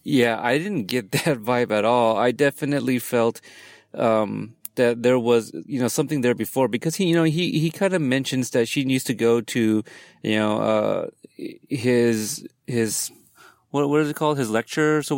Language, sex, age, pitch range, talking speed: English, male, 30-49, 115-140 Hz, 190 wpm